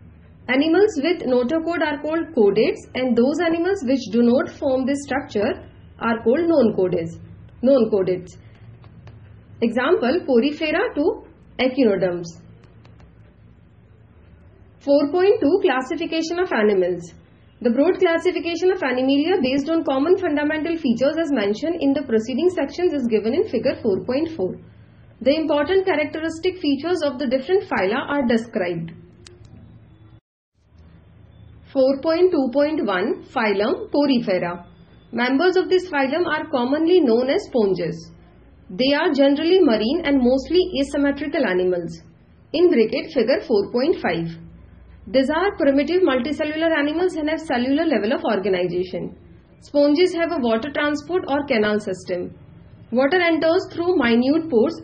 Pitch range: 210-320 Hz